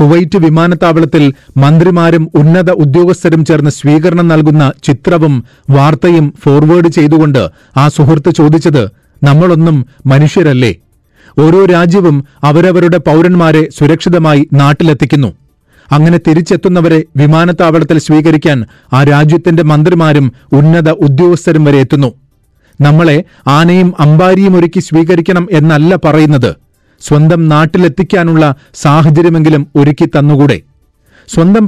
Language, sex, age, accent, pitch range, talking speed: Malayalam, male, 30-49, native, 145-170 Hz, 85 wpm